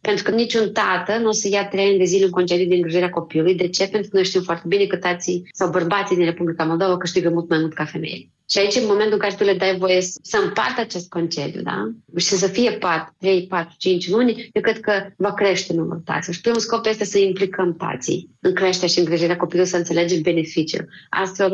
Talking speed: 235 wpm